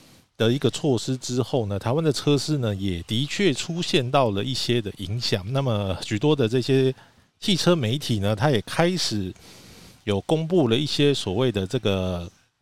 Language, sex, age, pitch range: Chinese, male, 50-69, 105-150 Hz